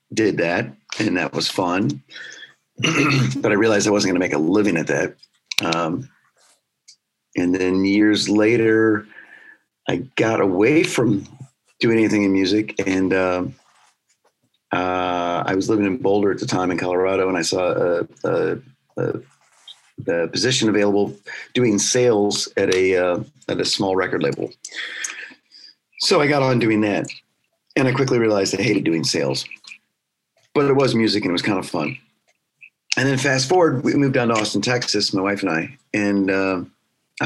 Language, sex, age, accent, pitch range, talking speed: English, male, 40-59, American, 95-110 Hz, 165 wpm